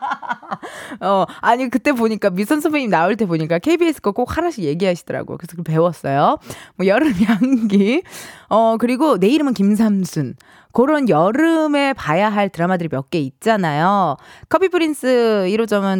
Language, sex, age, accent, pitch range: Korean, female, 20-39, native, 185-290 Hz